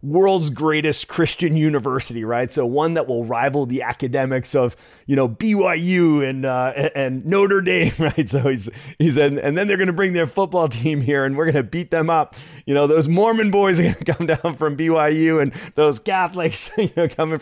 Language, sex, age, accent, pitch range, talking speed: English, male, 30-49, American, 120-150 Hz, 215 wpm